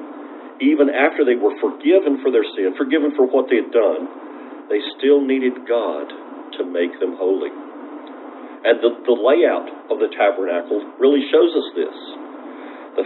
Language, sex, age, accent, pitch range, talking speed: English, male, 50-69, American, 290-420 Hz, 155 wpm